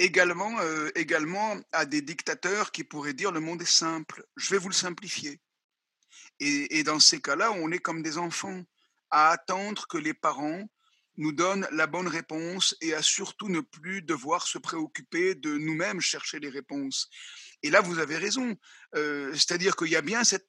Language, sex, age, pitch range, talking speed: French, male, 50-69, 150-200 Hz, 185 wpm